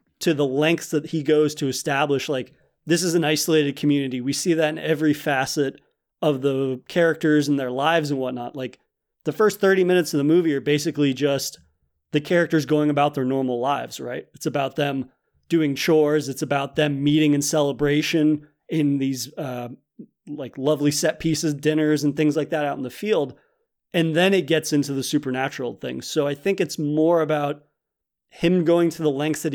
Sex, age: male, 30-49